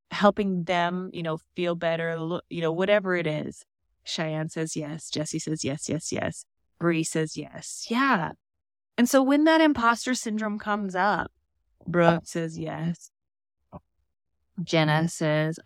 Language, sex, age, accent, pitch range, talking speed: English, female, 20-39, American, 155-195 Hz, 140 wpm